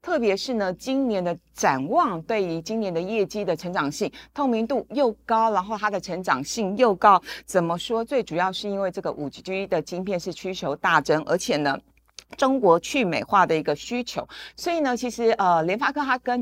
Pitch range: 160-230 Hz